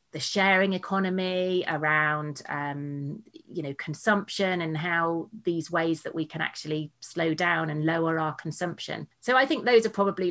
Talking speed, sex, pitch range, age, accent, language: 165 wpm, female, 155-190 Hz, 30-49, British, English